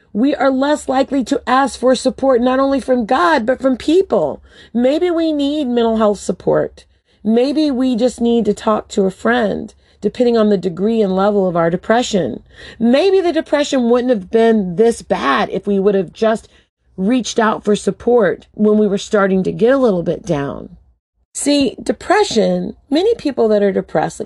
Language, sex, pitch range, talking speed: English, female, 185-255 Hz, 180 wpm